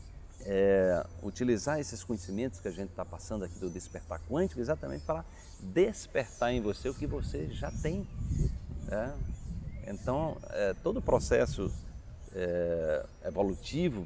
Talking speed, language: 135 wpm, Portuguese